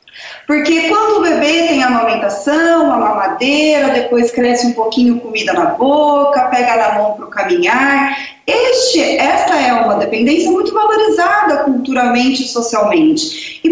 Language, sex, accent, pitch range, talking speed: Portuguese, female, Brazilian, 245-330 Hz, 135 wpm